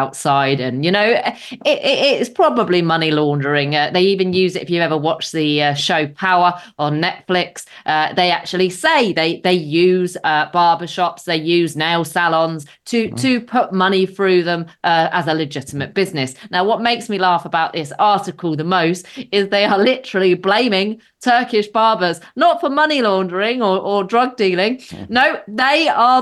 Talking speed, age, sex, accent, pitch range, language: 175 wpm, 30-49, female, British, 175-250 Hz, English